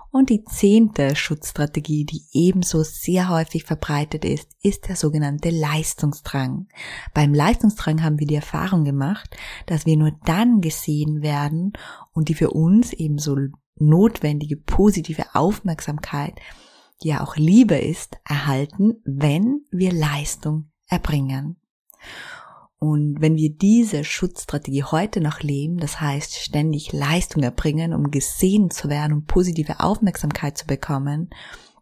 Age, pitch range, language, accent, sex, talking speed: 20-39, 150-185 Hz, German, German, female, 125 wpm